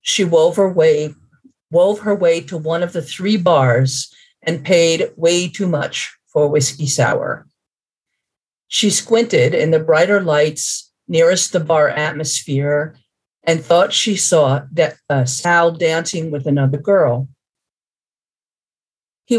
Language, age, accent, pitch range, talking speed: English, 50-69, American, 145-195 Hz, 135 wpm